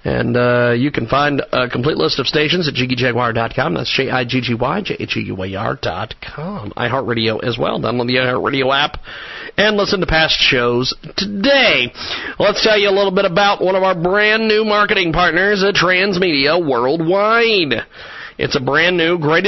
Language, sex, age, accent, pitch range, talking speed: English, male, 40-59, American, 140-205 Hz, 150 wpm